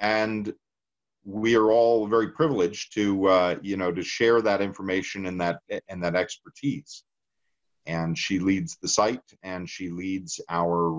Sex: male